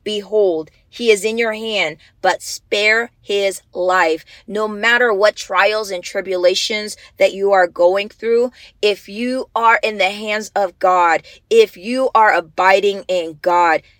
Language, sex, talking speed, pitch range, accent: English, female, 150 wpm, 175-220 Hz, American